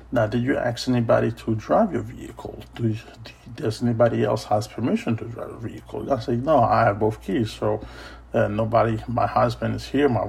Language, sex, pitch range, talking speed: English, male, 105-125 Hz, 190 wpm